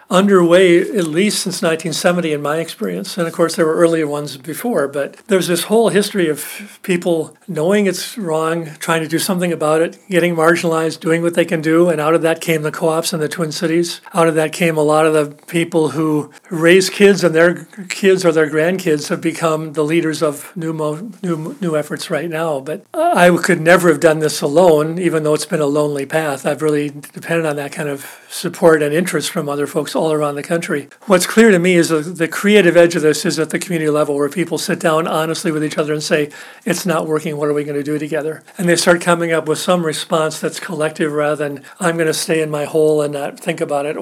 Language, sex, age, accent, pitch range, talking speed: English, male, 50-69, American, 155-175 Hz, 230 wpm